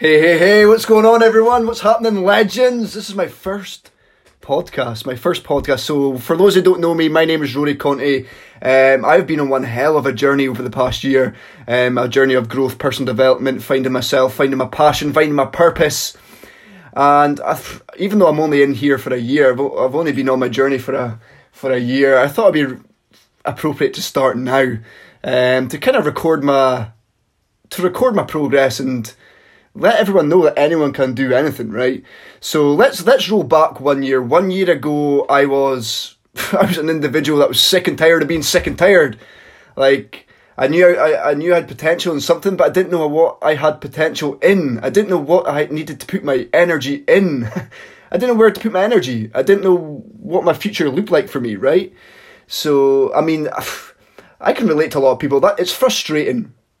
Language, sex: English, male